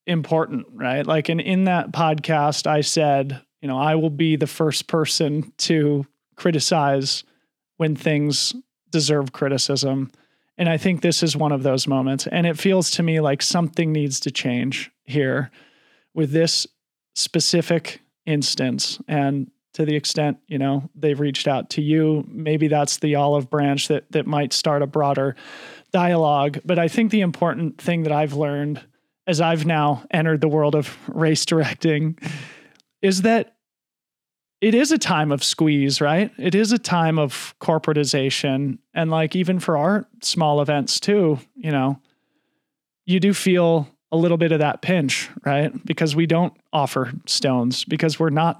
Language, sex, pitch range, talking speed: English, male, 140-165 Hz, 165 wpm